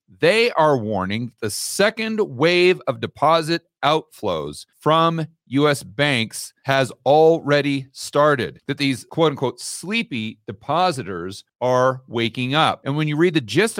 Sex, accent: male, American